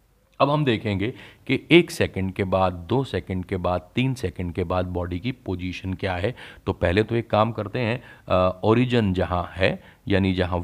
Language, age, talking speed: Hindi, 40-59, 185 wpm